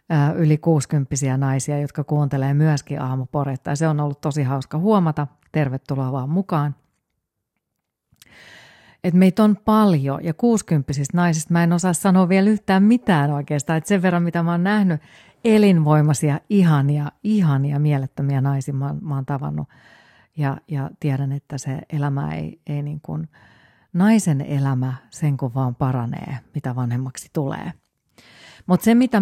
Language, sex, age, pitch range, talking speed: Finnish, female, 40-59, 135-165 Hz, 140 wpm